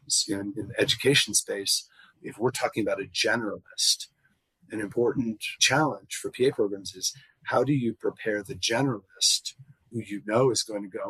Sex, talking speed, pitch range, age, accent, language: male, 160 wpm, 100-140 Hz, 40-59, American, English